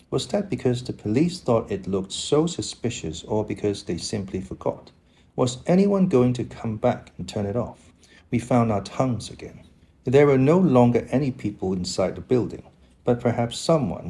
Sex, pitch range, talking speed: male, 90-130 Hz, 180 wpm